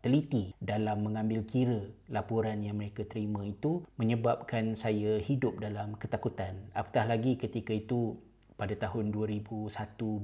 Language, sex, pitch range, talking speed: Malay, male, 100-115 Hz, 115 wpm